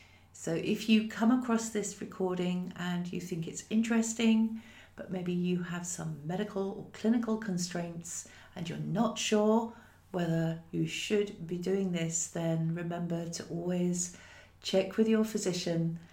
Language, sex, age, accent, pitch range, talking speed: English, female, 50-69, British, 160-205 Hz, 145 wpm